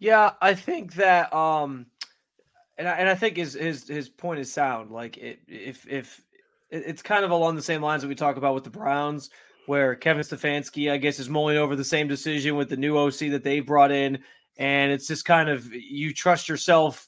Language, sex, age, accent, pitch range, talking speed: English, male, 20-39, American, 145-170 Hz, 220 wpm